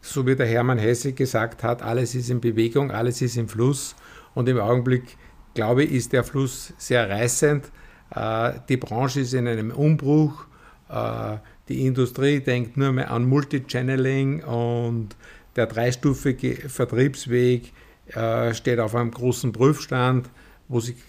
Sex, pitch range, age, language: male, 115-135 Hz, 50-69, German